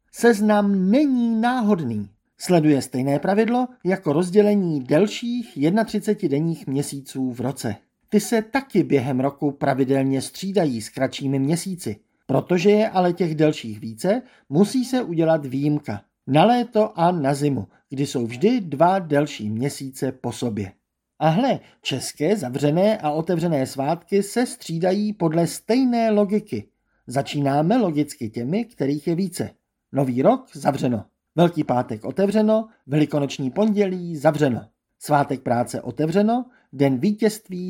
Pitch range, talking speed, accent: 135-205 Hz, 125 wpm, native